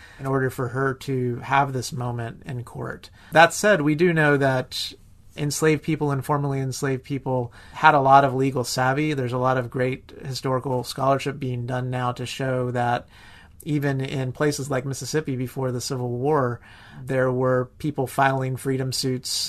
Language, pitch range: English, 125-135 Hz